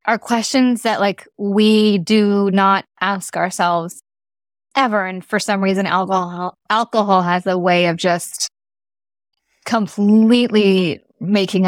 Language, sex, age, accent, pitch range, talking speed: English, female, 20-39, American, 165-195 Hz, 120 wpm